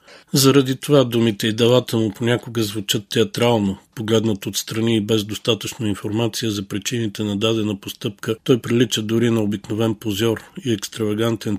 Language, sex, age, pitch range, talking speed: Bulgarian, male, 40-59, 105-120 Hz, 145 wpm